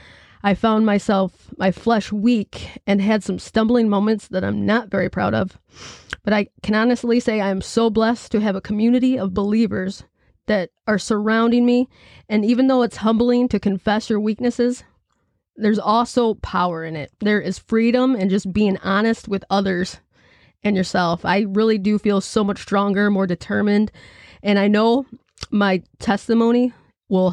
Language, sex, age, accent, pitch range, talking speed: English, female, 20-39, American, 190-225 Hz, 165 wpm